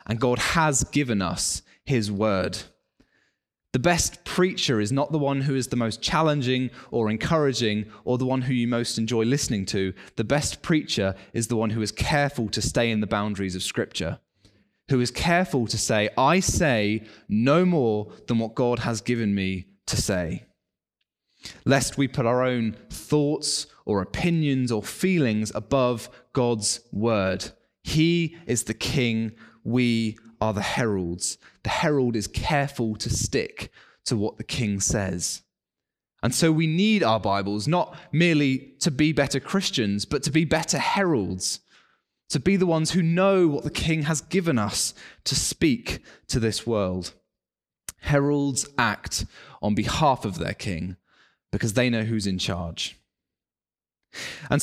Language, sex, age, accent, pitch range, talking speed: English, male, 20-39, British, 110-150 Hz, 160 wpm